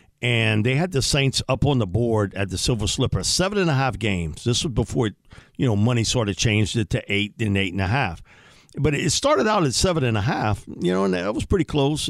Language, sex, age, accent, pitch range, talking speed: English, male, 50-69, American, 110-155 Hz, 255 wpm